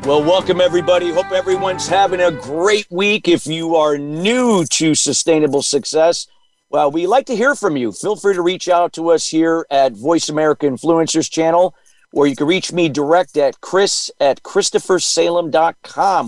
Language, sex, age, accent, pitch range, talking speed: English, male, 50-69, American, 135-180 Hz, 170 wpm